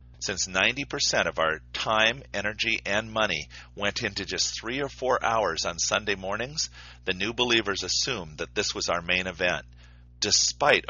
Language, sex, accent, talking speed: English, male, American, 160 wpm